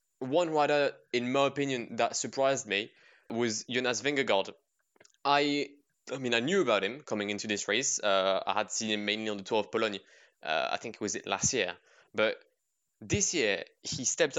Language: English